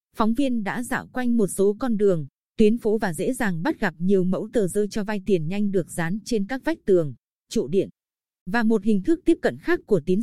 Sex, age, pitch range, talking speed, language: female, 20-39, 190-235 Hz, 240 wpm, Vietnamese